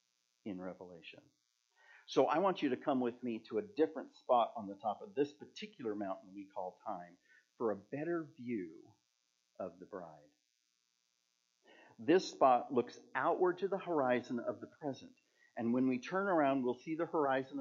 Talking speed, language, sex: 170 wpm, English, male